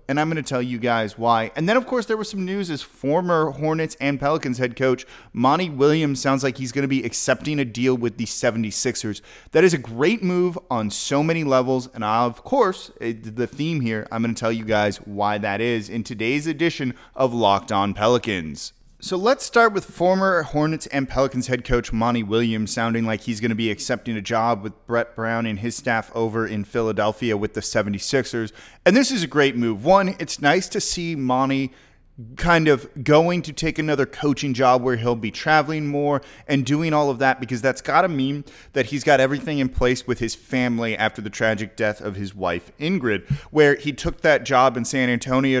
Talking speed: 210 wpm